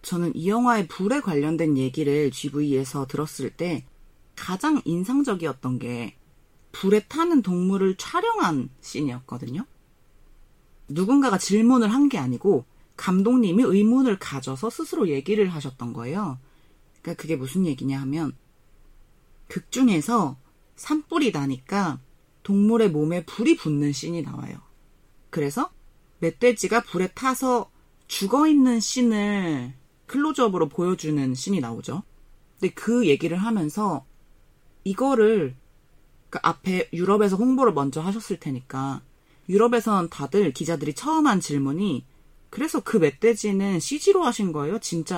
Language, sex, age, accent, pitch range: Korean, female, 40-59, native, 145-220 Hz